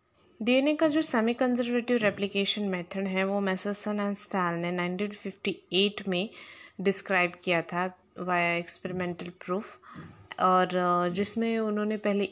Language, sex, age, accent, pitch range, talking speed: English, female, 20-39, Indian, 180-230 Hz, 120 wpm